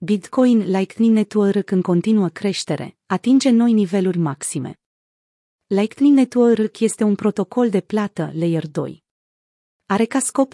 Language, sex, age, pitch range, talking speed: Romanian, female, 30-49, 180-225 Hz, 125 wpm